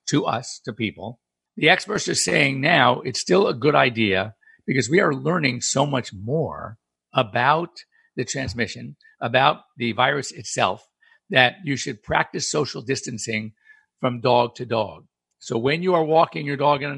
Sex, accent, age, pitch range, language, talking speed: male, American, 50-69, 120-160 Hz, English, 165 wpm